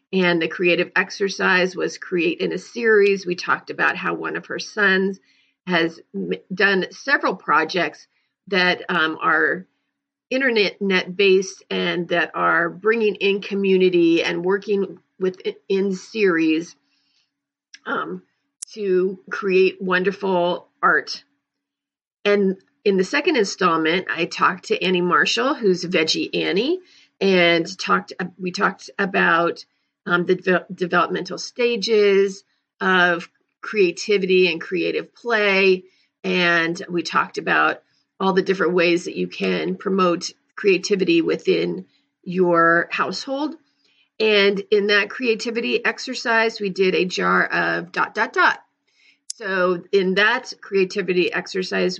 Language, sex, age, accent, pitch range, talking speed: English, female, 40-59, American, 180-210 Hz, 120 wpm